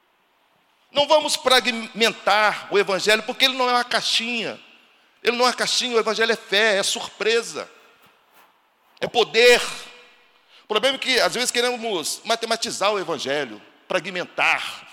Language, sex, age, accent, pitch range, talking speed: Portuguese, male, 50-69, Brazilian, 170-240 Hz, 140 wpm